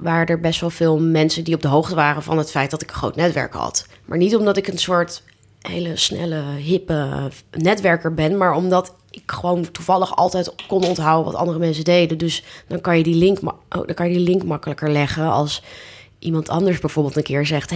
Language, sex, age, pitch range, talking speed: Dutch, female, 20-39, 145-175 Hz, 225 wpm